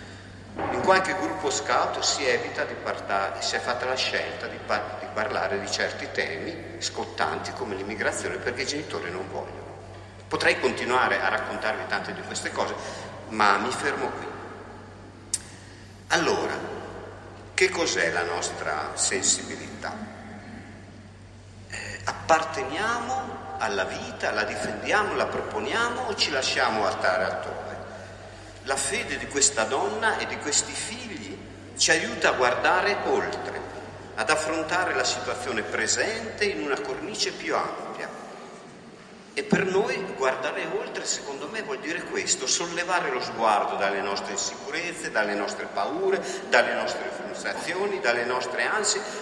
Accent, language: native, Italian